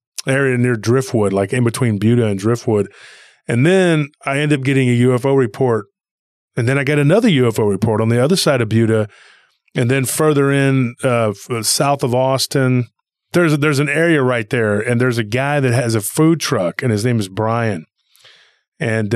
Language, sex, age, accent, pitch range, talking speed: English, male, 30-49, American, 115-140 Hz, 190 wpm